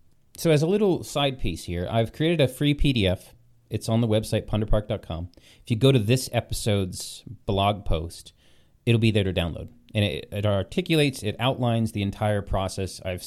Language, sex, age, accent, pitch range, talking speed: English, male, 30-49, American, 100-135 Hz, 180 wpm